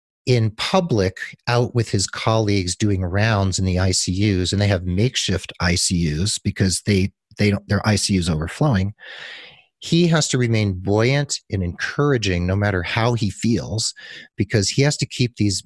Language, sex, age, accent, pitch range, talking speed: English, male, 40-59, American, 90-115 Hz, 160 wpm